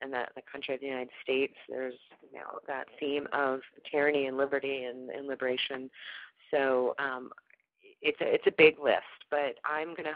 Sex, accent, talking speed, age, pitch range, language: female, American, 185 wpm, 30-49, 130-150 Hz, English